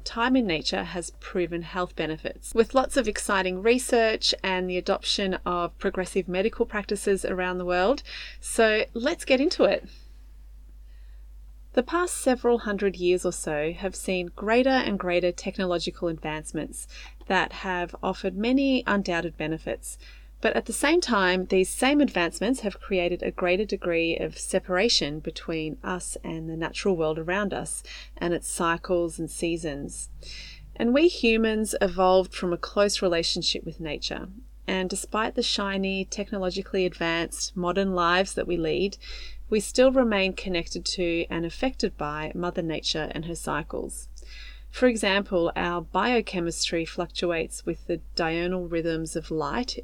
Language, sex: English, female